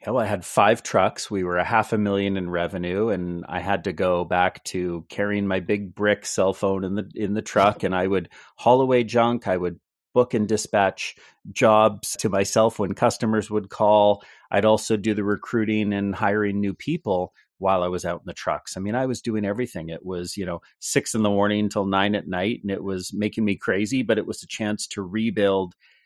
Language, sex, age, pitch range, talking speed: English, male, 30-49, 95-110 Hz, 225 wpm